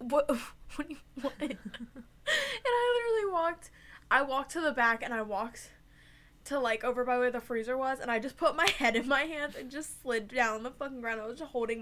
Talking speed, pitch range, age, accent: 225 wpm, 240-280 Hz, 10-29, American